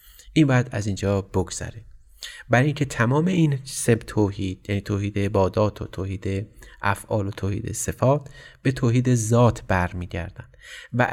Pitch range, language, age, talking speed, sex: 100-130 Hz, Persian, 30-49, 135 wpm, male